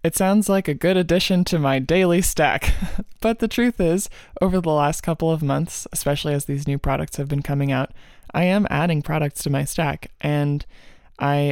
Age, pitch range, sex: 20-39, 140-165 Hz, male